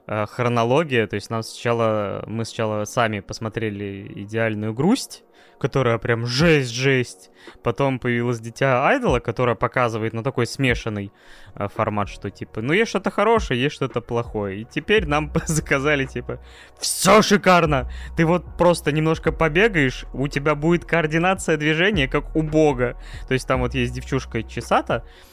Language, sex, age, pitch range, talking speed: Russian, male, 20-39, 115-145 Hz, 145 wpm